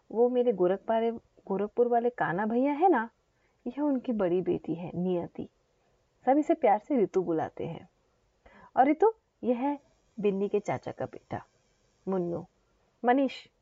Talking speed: 145 wpm